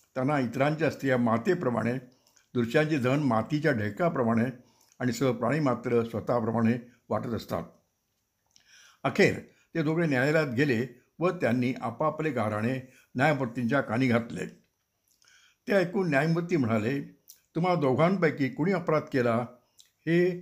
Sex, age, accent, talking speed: male, 60-79, native, 105 wpm